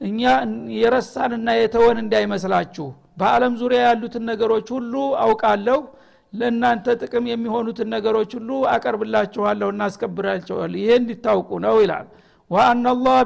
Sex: male